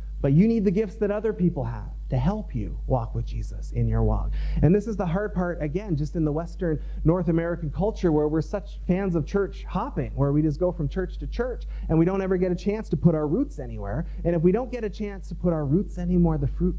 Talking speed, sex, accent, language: 260 wpm, male, American, English